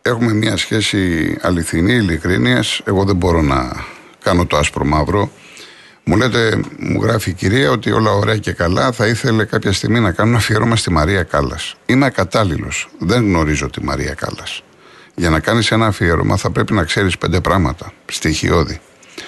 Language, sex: Greek, male